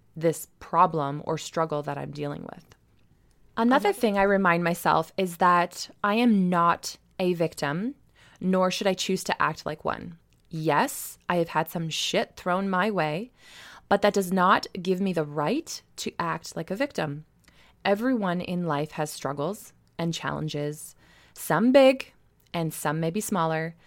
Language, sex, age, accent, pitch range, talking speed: English, female, 20-39, American, 155-195 Hz, 160 wpm